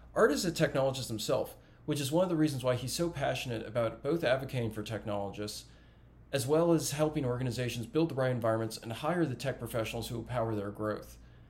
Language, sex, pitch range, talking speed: English, male, 110-145 Hz, 200 wpm